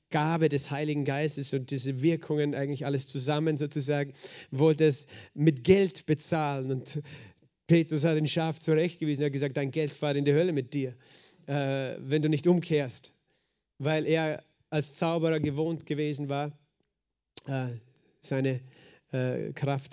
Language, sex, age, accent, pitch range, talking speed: German, male, 40-59, German, 140-160 Hz, 140 wpm